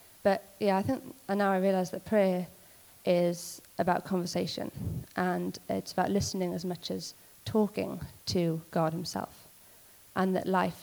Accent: British